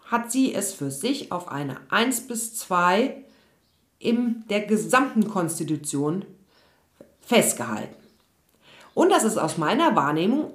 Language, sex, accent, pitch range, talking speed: German, female, German, 175-260 Hz, 120 wpm